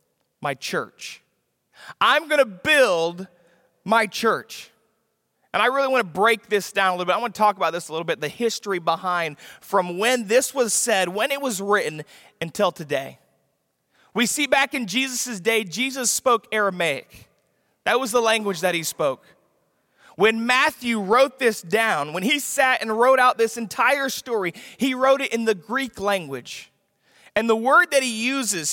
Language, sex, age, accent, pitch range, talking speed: English, male, 30-49, American, 190-255 Hz, 170 wpm